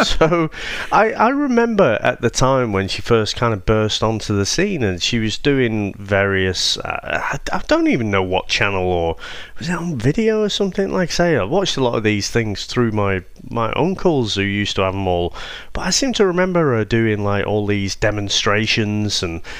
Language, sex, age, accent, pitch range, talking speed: English, male, 30-49, British, 100-145 Hz, 205 wpm